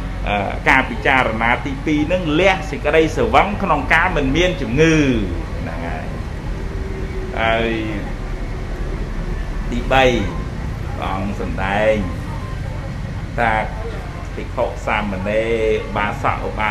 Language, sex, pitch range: English, male, 95-120 Hz